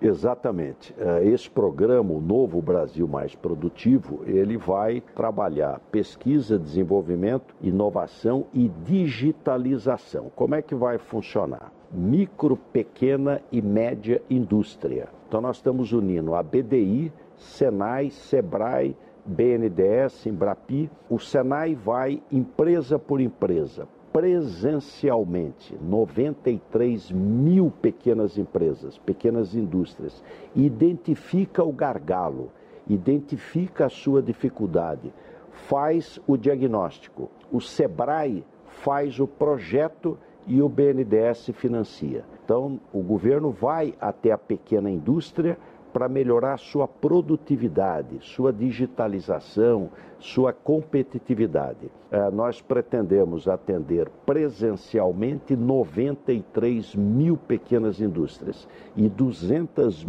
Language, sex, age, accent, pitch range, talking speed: Portuguese, male, 60-79, Brazilian, 110-145 Hz, 95 wpm